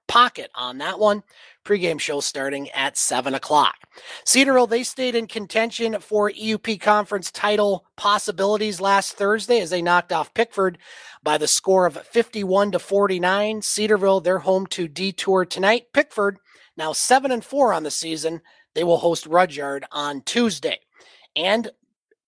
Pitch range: 165-220 Hz